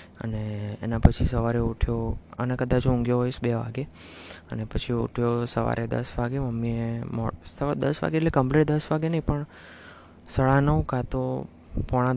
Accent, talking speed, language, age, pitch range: native, 165 wpm, Gujarati, 20-39, 100-130 Hz